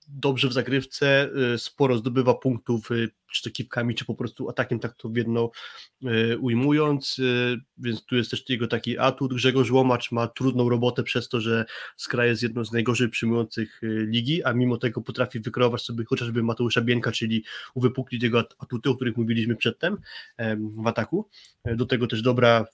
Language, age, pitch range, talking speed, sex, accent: Polish, 20-39, 115-130 Hz, 165 wpm, male, native